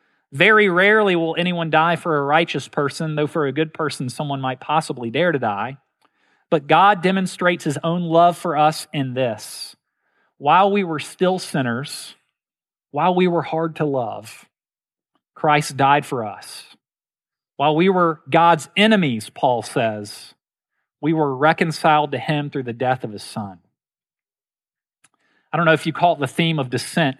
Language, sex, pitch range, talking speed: English, male, 140-175 Hz, 165 wpm